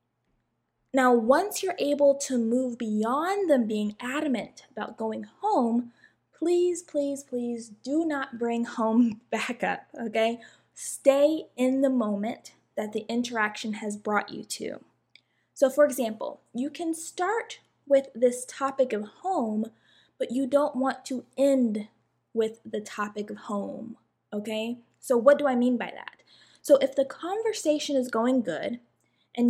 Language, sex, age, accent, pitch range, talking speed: English, female, 10-29, American, 230-290 Hz, 145 wpm